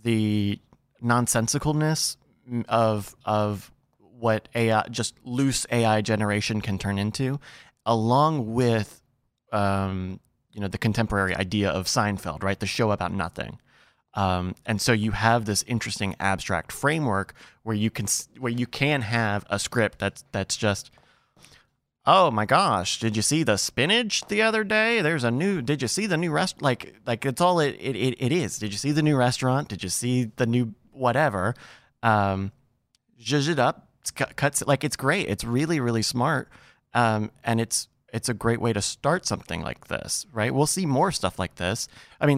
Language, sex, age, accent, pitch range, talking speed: English, male, 30-49, American, 105-135 Hz, 180 wpm